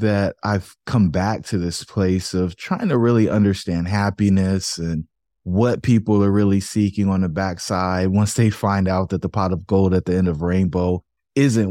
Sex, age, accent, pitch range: male, 20-39, American, 90-105 Hz